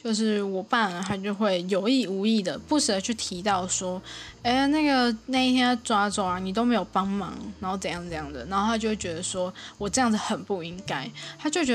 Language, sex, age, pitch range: Chinese, female, 10-29, 195-260 Hz